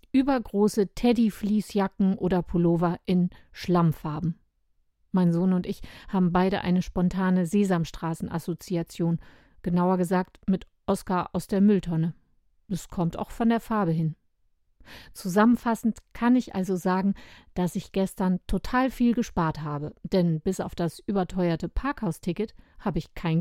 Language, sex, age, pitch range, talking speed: German, female, 50-69, 170-210 Hz, 130 wpm